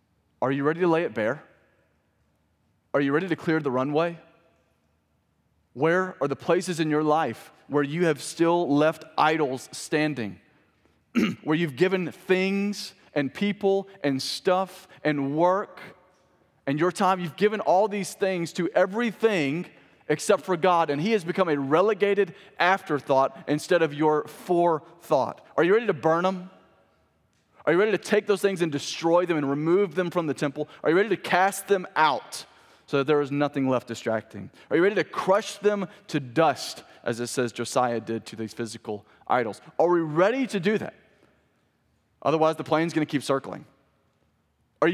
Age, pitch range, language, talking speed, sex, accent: 30-49, 140-185 Hz, English, 170 wpm, male, American